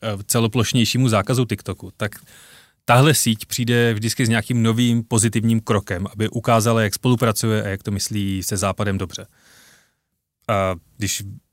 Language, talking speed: Czech, 135 wpm